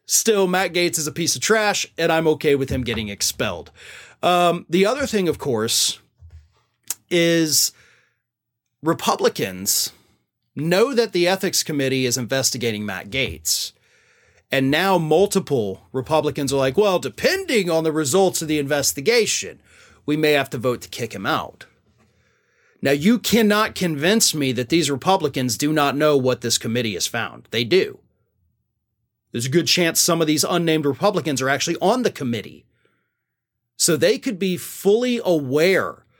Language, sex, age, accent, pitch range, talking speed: English, male, 30-49, American, 135-185 Hz, 155 wpm